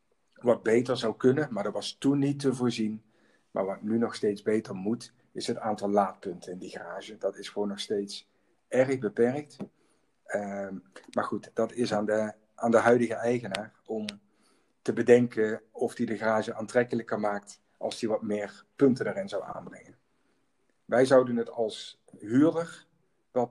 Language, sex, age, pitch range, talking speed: Dutch, male, 50-69, 105-125 Hz, 165 wpm